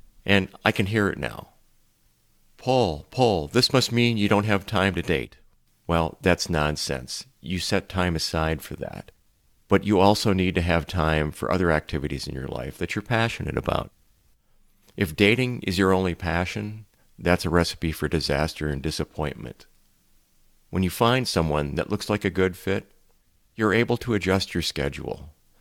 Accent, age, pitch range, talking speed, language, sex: American, 40-59, 85-105 Hz, 170 wpm, English, male